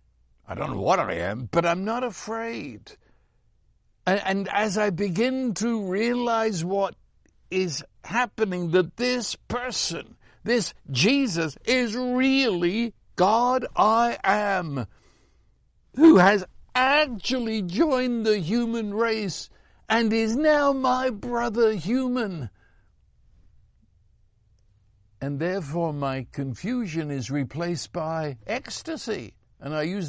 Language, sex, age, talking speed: English, male, 60-79, 110 wpm